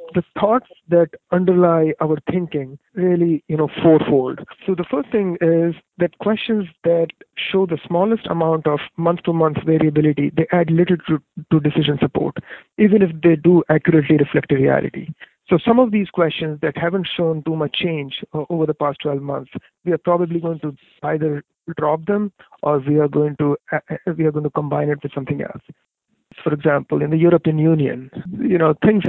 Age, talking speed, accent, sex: 50-69, 185 wpm, Indian, male